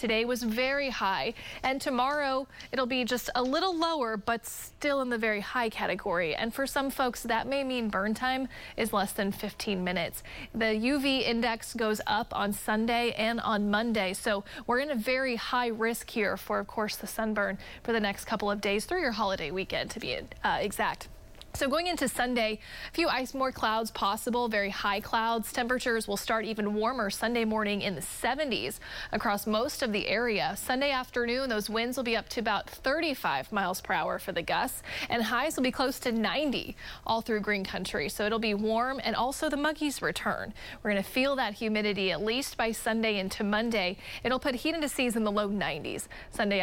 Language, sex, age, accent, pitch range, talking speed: English, female, 30-49, American, 210-255 Hz, 200 wpm